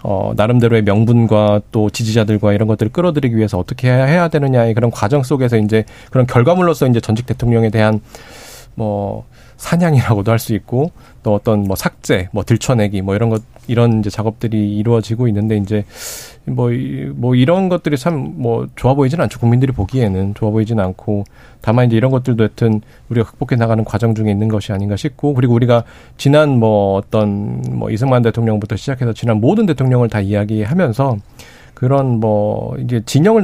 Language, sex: Korean, male